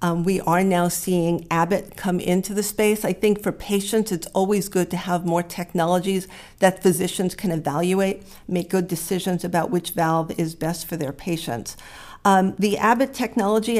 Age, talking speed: 50-69, 175 wpm